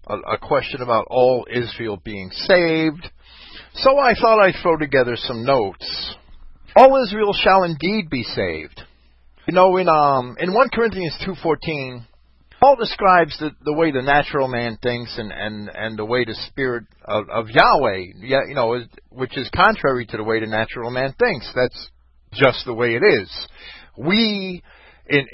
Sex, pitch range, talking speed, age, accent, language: male, 110-180 Hz, 165 wpm, 50-69, American, English